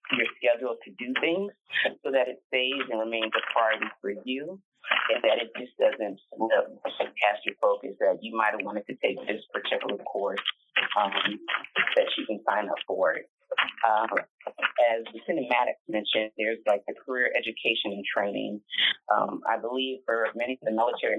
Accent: American